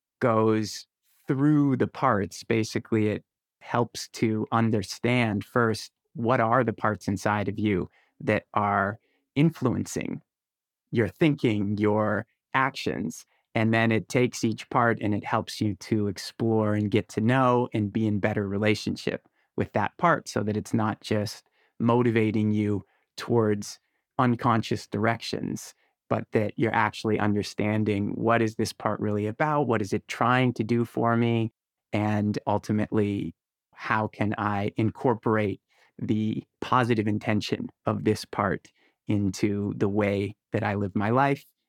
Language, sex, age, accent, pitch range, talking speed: English, male, 30-49, American, 105-115 Hz, 140 wpm